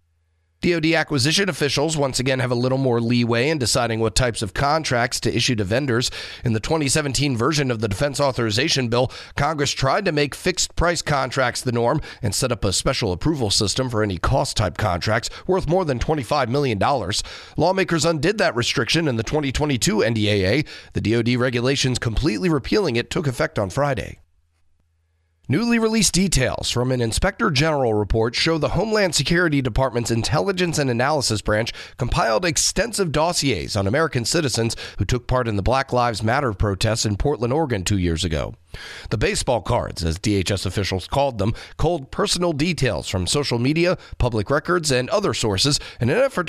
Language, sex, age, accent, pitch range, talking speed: English, male, 40-59, American, 110-150 Hz, 170 wpm